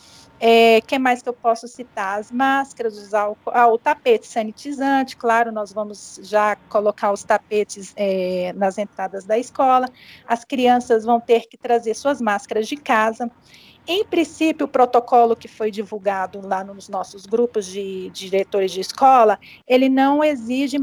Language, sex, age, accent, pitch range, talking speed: Portuguese, female, 40-59, Brazilian, 220-270 Hz, 150 wpm